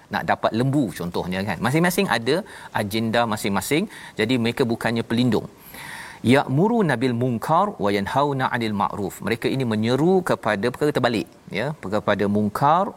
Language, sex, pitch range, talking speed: Malayalam, male, 105-135 Hz, 140 wpm